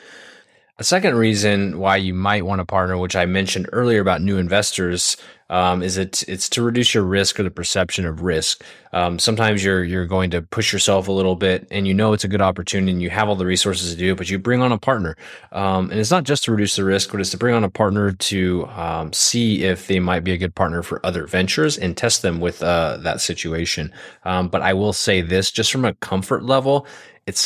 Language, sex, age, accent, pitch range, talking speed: English, male, 20-39, American, 90-100 Hz, 240 wpm